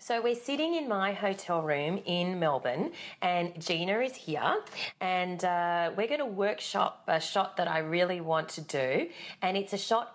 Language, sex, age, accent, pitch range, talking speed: English, female, 30-49, Australian, 165-210 Hz, 185 wpm